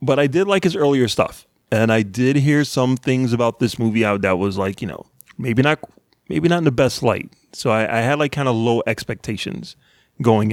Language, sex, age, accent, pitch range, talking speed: English, male, 30-49, American, 115-140 Hz, 230 wpm